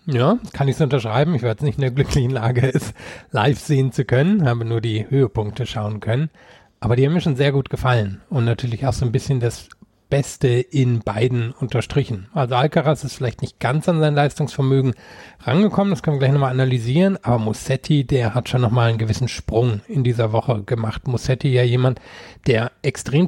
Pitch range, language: 120-140 Hz, German